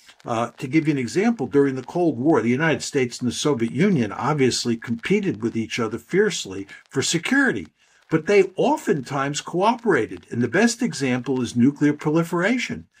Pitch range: 120-165 Hz